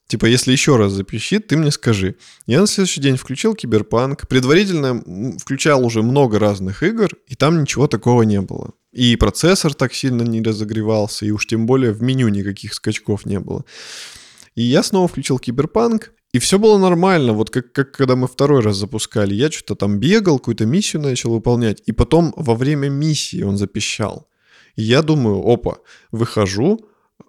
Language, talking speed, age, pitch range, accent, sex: Russian, 175 wpm, 20-39, 110-155 Hz, native, male